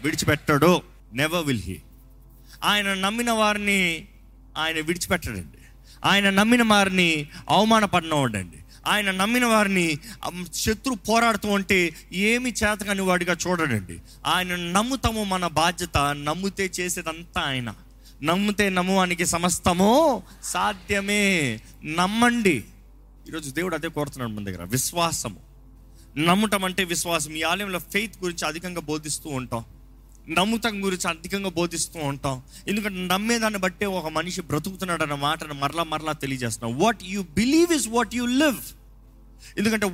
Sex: male